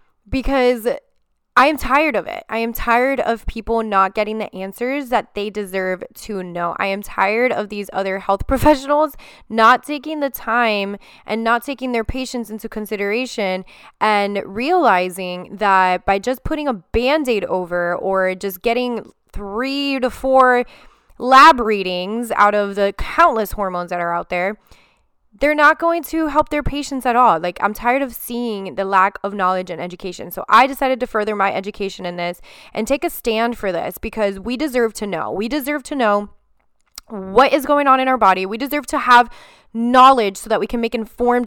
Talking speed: 185 wpm